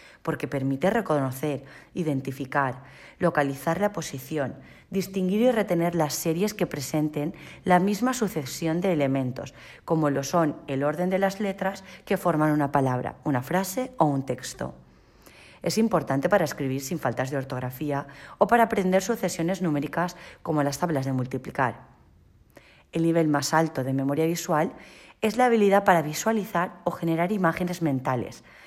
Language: Spanish